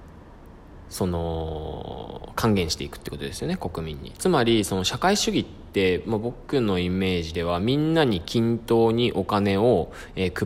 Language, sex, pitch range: Japanese, male, 85-110 Hz